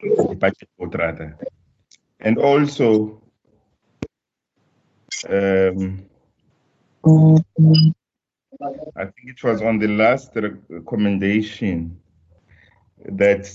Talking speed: 55 wpm